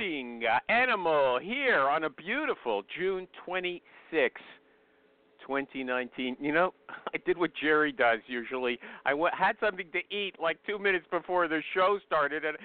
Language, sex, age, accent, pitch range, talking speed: English, male, 50-69, American, 145-200 Hz, 135 wpm